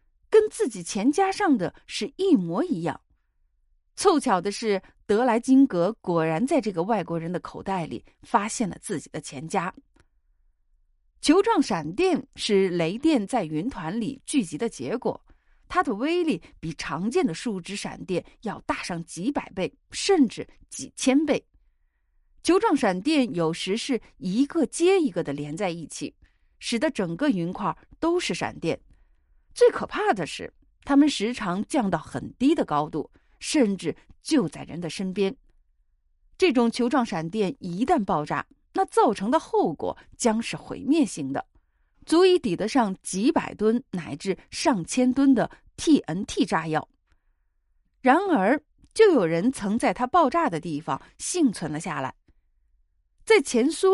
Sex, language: female, Chinese